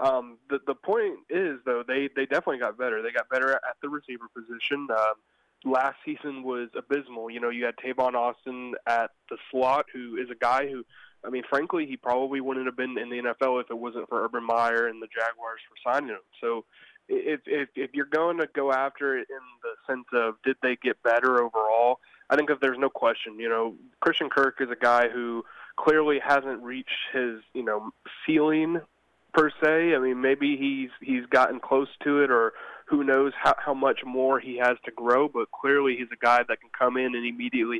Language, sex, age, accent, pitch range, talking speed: English, male, 20-39, American, 120-140 Hz, 210 wpm